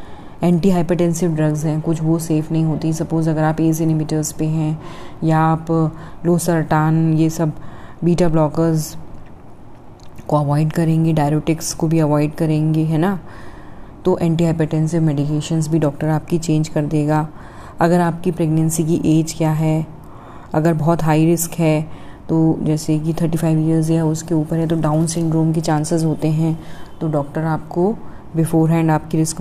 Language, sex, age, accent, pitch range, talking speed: Hindi, female, 20-39, native, 155-165 Hz, 155 wpm